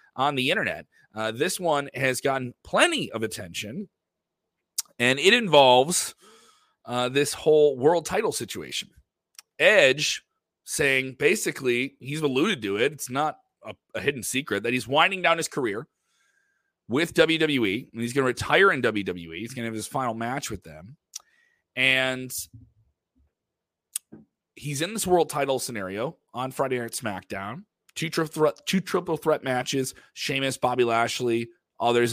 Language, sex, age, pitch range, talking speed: English, male, 30-49, 110-155 Hz, 150 wpm